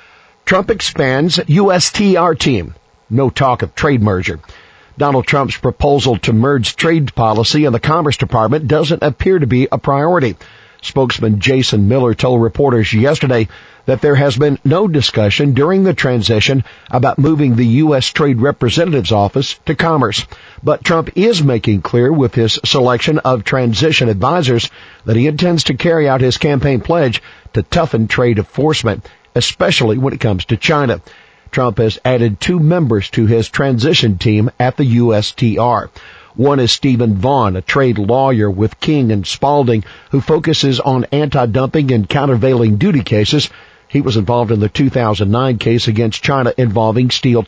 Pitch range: 115-145 Hz